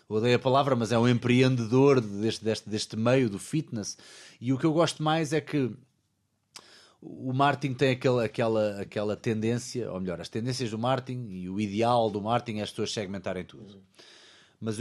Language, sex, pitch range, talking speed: Portuguese, male, 110-150 Hz, 180 wpm